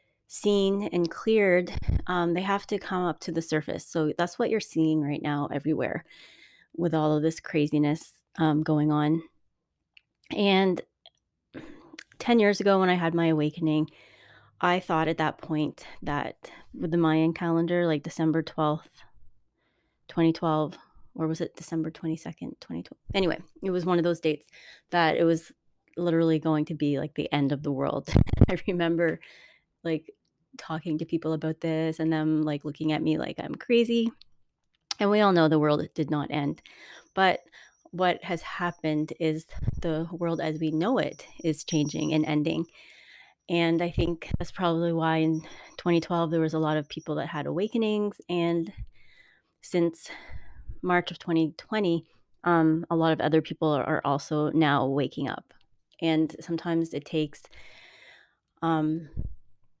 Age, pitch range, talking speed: 20-39, 155-175 Hz, 155 wpm